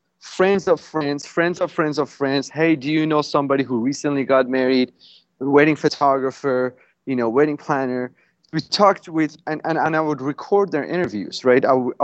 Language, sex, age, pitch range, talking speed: English, male, 30-49, 125-160 Hz, 180 wpm